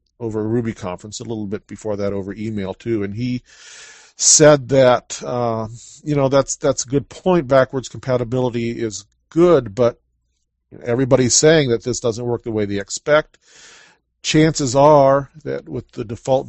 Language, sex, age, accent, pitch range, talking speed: English, male, 40-59, American, 110-135 Hz, 165 wpm